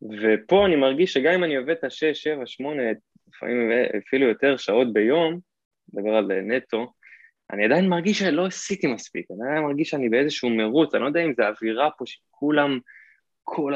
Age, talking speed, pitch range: 20-39, 180 wpm, 115-155 Hz